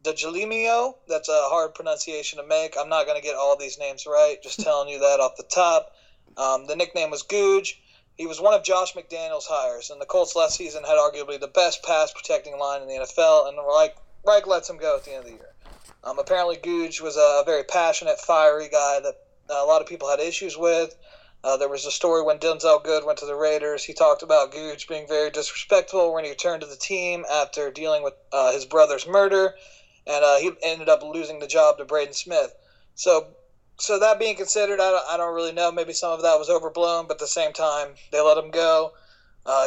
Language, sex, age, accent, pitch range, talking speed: English, male, 30-49, American, 150-205 Hz, 225 wpm